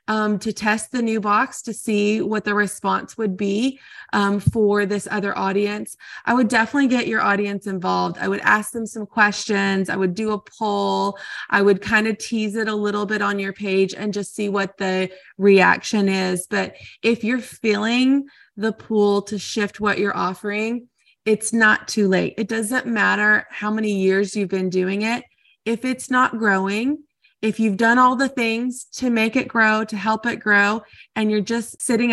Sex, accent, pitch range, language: female, American, 200-235 Hz, English